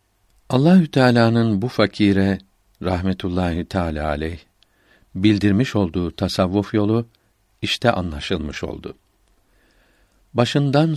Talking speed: 80 wpm